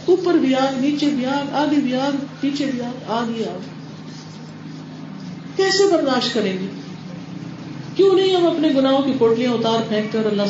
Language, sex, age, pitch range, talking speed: Urdu, female, 40-59, 200-290 Hz, 130 wpm